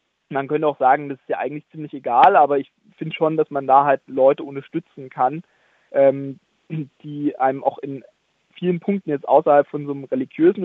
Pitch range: 130-160 Hz